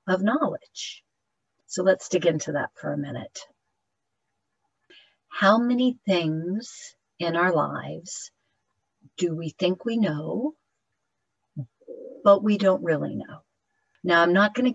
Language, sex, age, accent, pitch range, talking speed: English, female, 40-59, American, 155-200 Hz, 120 wpm